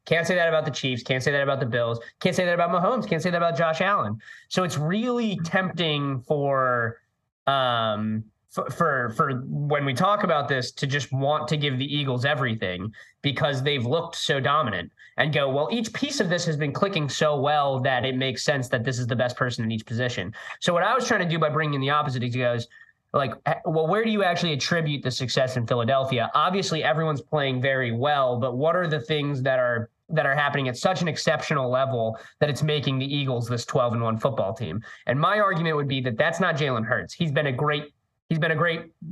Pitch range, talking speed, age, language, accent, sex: 130-165 Hz, 230 wpm, 20-39, English, American, male